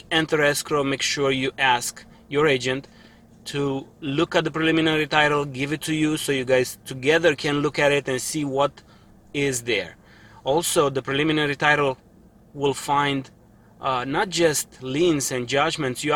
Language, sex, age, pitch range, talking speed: English, male, 30-49, 130-165 Hz, 165 wpm